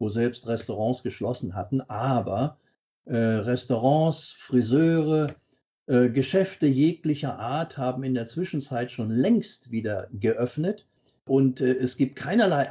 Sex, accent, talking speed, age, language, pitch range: male, German, 125 wpm, 50-69, German, 120-160 Hz